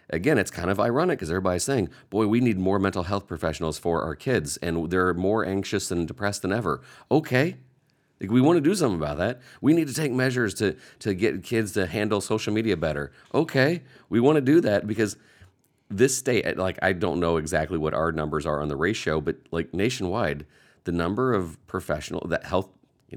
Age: 40-59